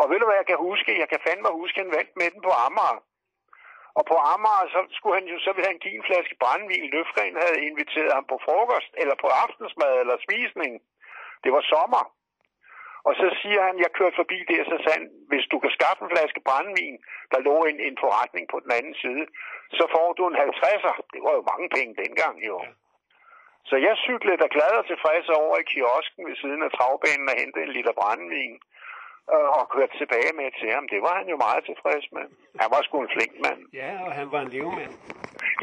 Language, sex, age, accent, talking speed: Danish, male, 60-79, native, 215 wpm